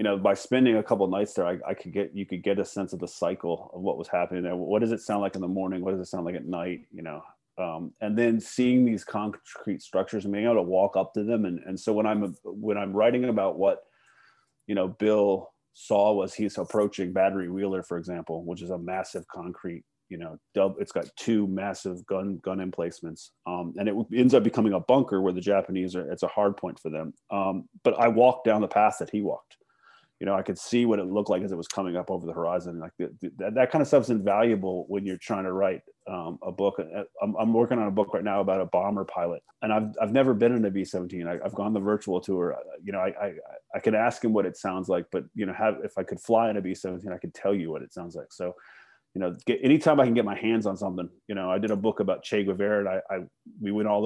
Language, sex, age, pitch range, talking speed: English, male, 30-49, 90-110 Hz, 265 wpm